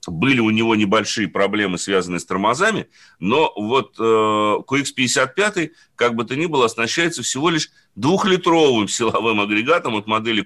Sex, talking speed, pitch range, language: male, 140 wpm, 110-140 Hz, Russian